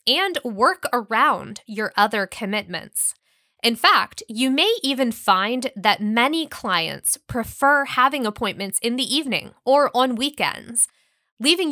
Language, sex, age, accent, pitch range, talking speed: English, female, 20-39, American, 210-285 Hz, 130 wpm